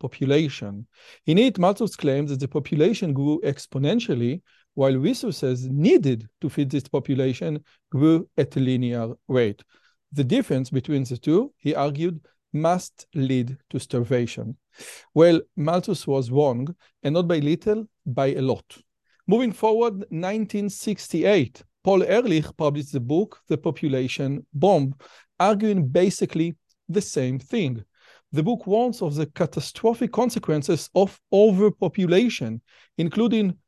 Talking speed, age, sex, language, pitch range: 125 wpm, 40-59, male, Hebrew, 140-200 Hz